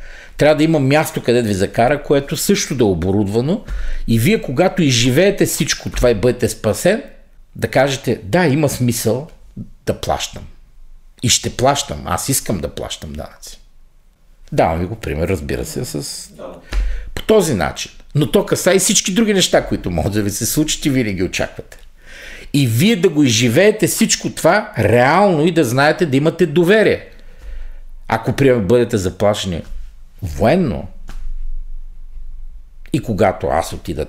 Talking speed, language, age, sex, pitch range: 150 wpm, Bulgarian, 50-69, male, 95-160 Hz